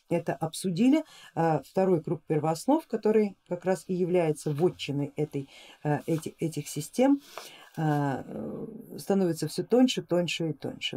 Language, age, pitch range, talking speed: Russian, 50-69, 155-215 Hz, 110 wpm